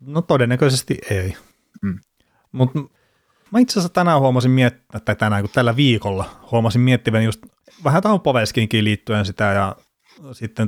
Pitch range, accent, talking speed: 105-120 Hz, native, 135 wpm